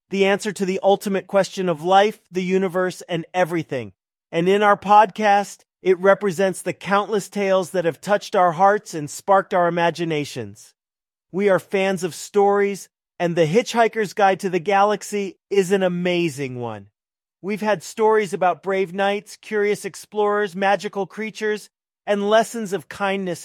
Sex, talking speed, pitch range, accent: male, 155 wpm, 165-200 Hz, American